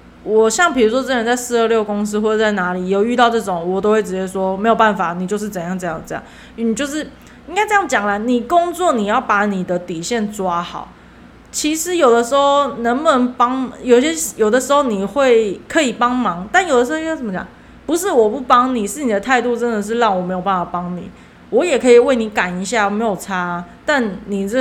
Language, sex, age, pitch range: Chinese, female, 20-39, 195-245 Hz